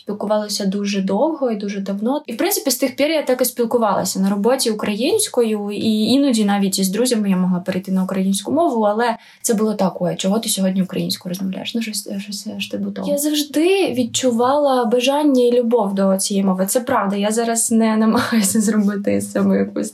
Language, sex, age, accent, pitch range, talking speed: Ukrainian, female, 20-39, native, 210-265 Hz, 185 wpm